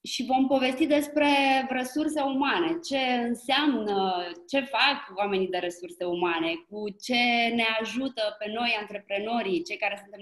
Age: 20-39